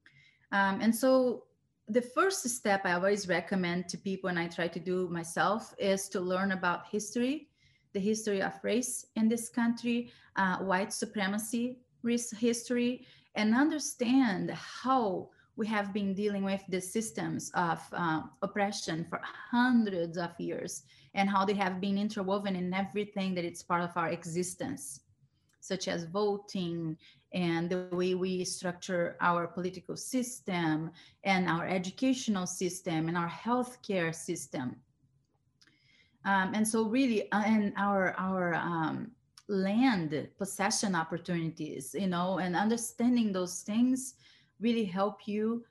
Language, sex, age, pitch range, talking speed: English, female, 30-49, 175-215 Hz, 135 wpm